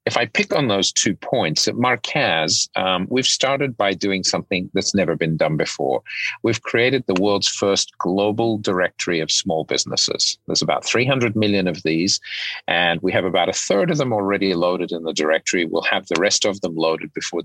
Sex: male